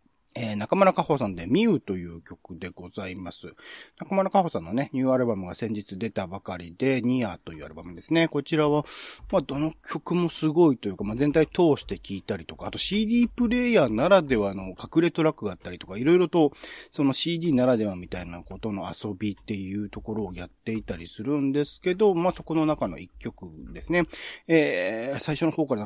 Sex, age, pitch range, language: male, 30-49, 95-155 Hz, Japanese